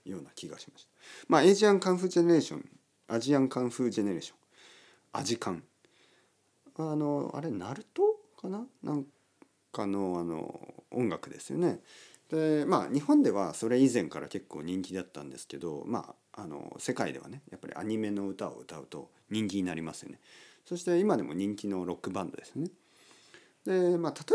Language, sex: Japanese, male